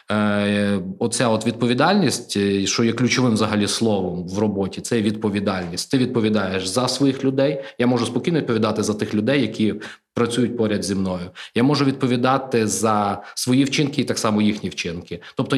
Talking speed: 160 wpm